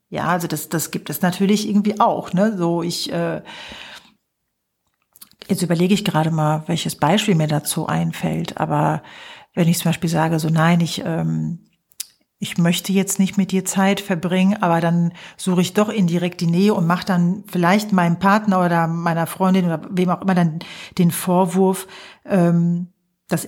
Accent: German